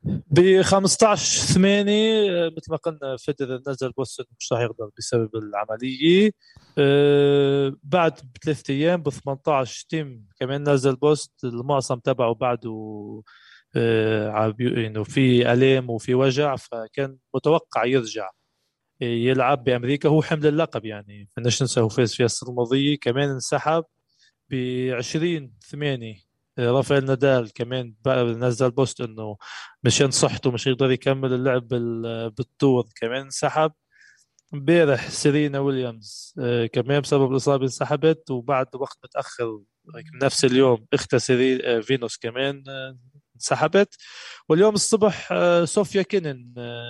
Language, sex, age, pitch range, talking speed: Arabic, male, 20-39, 120-150 Hz, 115 wpm